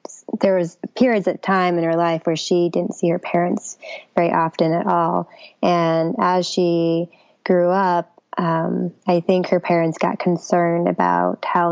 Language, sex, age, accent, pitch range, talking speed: English, female, 20-39, American, 165-185 Hz, 165 wpm